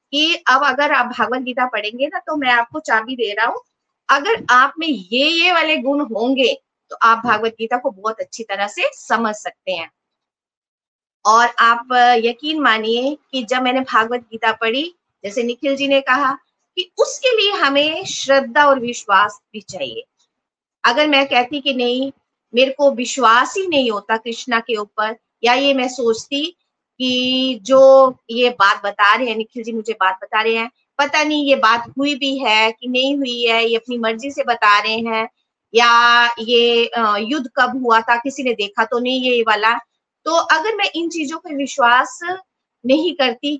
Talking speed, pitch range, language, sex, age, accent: 180 wpm, 230-285 Hz, Hindi, female, 50-69, native